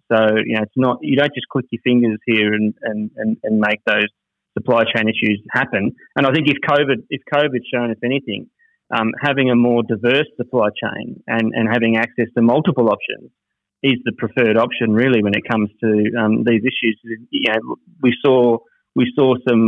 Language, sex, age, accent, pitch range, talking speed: English, male, 30-49, Australian, 115-130 Hz, 200 wpm